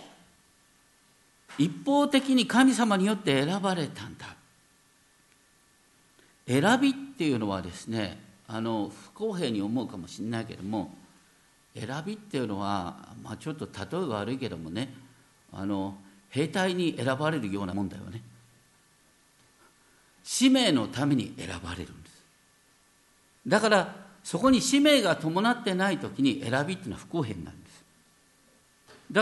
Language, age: Japanese, 50-69